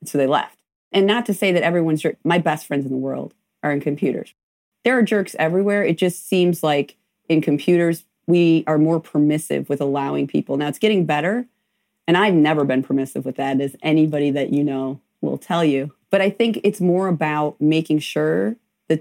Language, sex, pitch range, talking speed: English, female, 145-185 Hz, 200 wpm